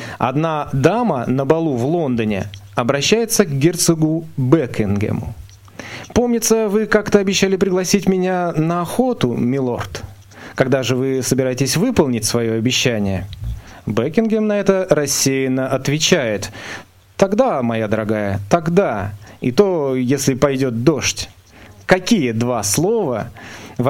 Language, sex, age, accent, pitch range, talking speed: Russian, male, 30-49, native, 110-165 Hz, 110 wpm